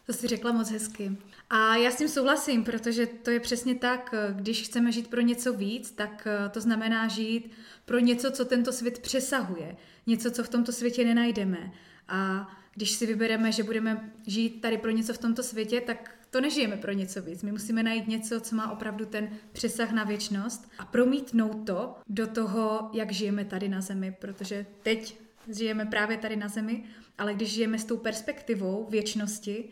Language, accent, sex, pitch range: Czech, native, female, 215-255 Hz